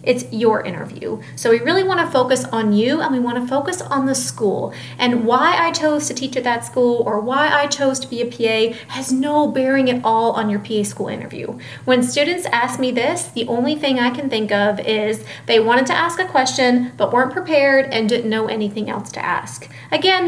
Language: English